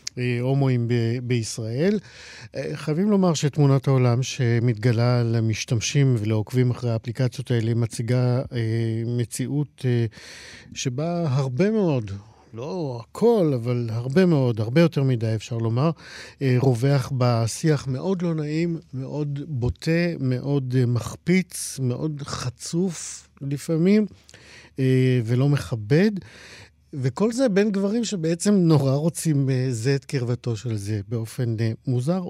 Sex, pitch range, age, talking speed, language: male, 115-145 Hz, 50-69, 110 wpm, Hebrew